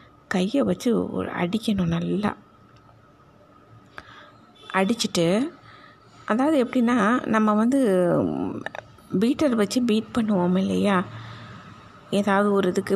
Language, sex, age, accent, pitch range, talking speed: Tamil, female, 20-39, native, 185-225 Hz, 80 wpm